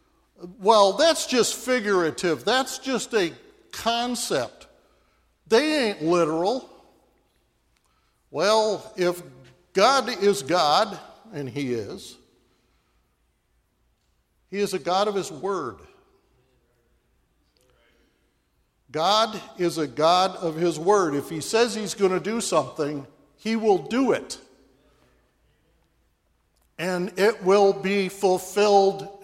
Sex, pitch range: male, 155-210 Hz